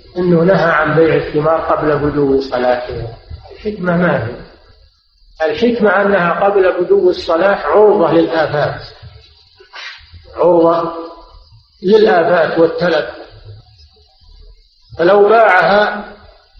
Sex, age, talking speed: male, 50-69, 80 wpm